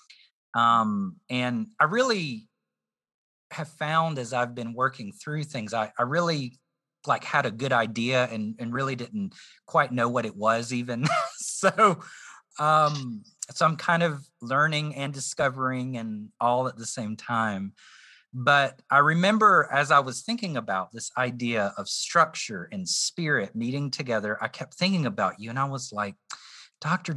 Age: 30-49